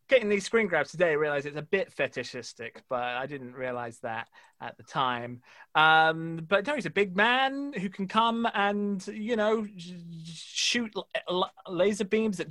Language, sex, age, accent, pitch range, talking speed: English, male, 30-49, British, 160-230 Hz, 175 wpm